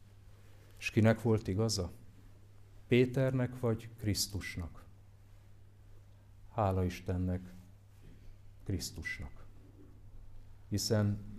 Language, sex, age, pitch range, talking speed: Hungarian, male, 50-69, 100-115 Hz, 60 wpm